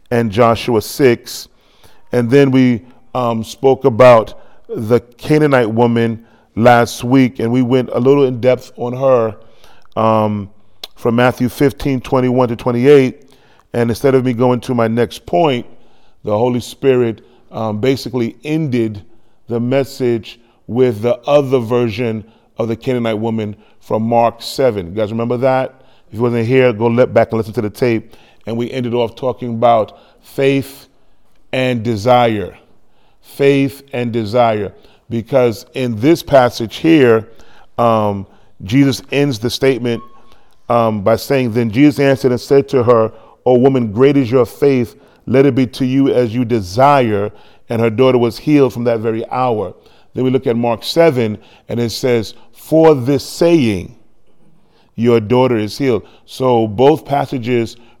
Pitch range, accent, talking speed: 115-130 Hz, American, 155 wpm